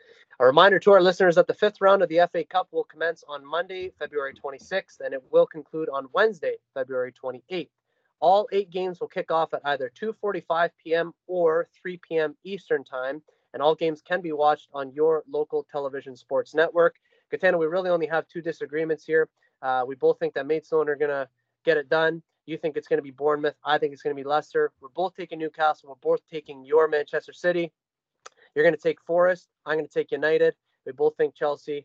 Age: 20-39